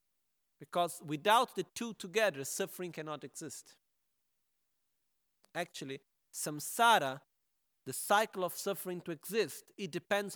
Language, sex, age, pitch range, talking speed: Italian, male, 40-59, 150-200 Hz, 105 wpm